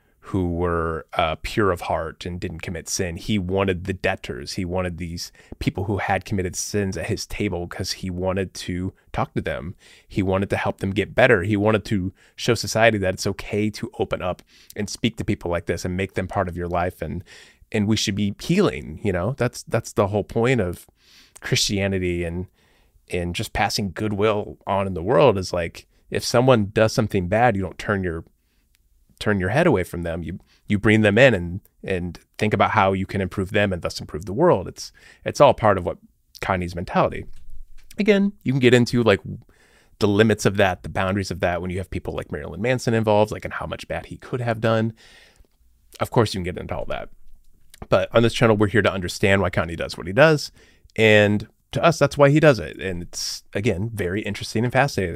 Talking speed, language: 215 wpm, English